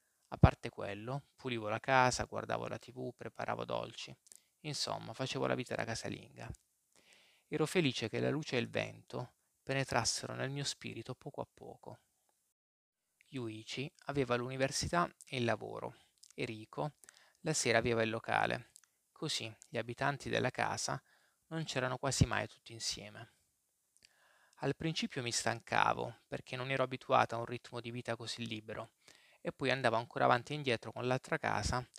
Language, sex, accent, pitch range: Italian, male, native, 115-135 Hz